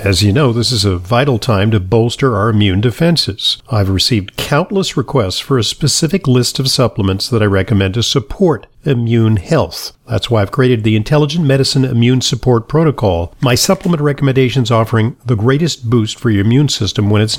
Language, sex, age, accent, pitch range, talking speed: English, male, 50-69, American, 110-140 Hz, 185 wpm